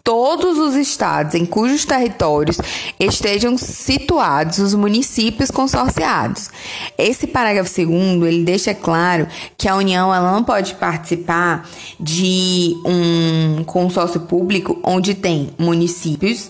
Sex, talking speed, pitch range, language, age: female, 105 wpm, 175-225 Hz, Portuguese, 20-39